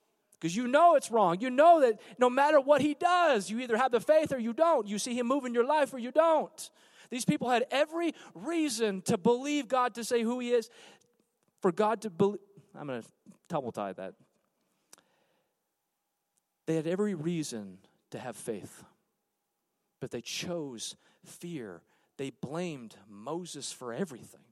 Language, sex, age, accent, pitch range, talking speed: English, male, 40-59, American, 185-265 Hz, 170 wpm